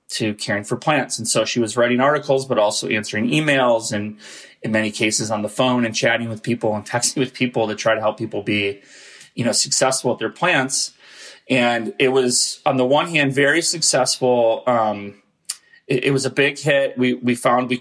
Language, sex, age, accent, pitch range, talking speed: English, male, 30-49, American, 110-130 Hz, 205 wpm